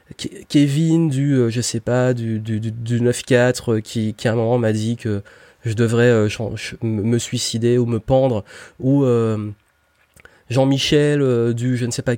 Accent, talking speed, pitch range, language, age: French, 155 wpm, 115-145 Hz, French, 20-39